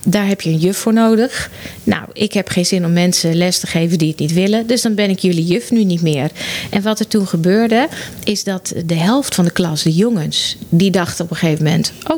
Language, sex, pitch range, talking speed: Dutch, female, 175-225 Hz, 250 wpm